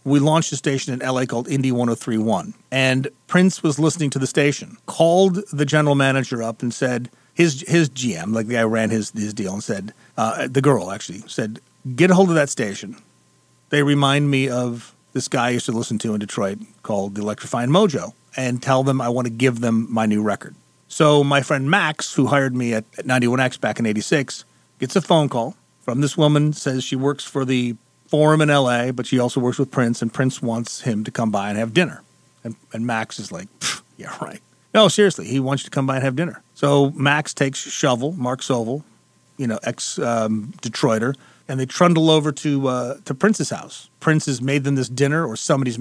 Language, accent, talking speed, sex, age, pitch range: English, American, 220 wpm, male, 40-59, 120-145 Hz